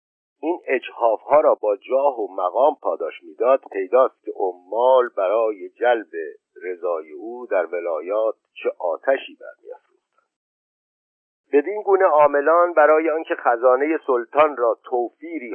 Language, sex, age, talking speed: Persian, male, 50-69, 110 wpm